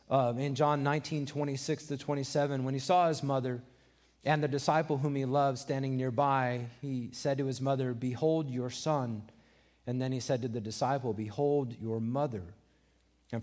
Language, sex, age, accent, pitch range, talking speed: English, male, 40-59, American, 115-160 Hz, 175 wpm